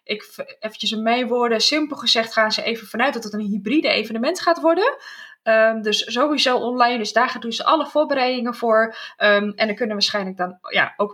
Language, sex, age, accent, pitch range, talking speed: Dutch, female, 20-39, Dutch, 210-290 Hz, 190 wpm